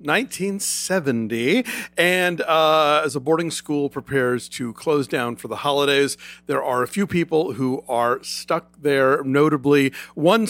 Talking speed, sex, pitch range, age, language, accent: 145 wpm, male, 135-170 Hz, 50-69, English, American